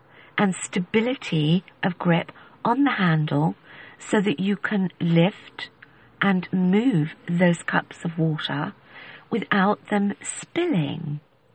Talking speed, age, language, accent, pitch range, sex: 110 wpm, 50-69, English, British, 160-205 Hz, female